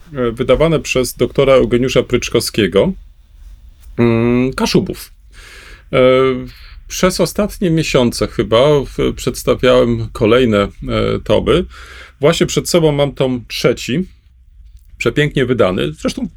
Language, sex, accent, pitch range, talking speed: Polish, male, native, 110-140 Hz, 80 wpm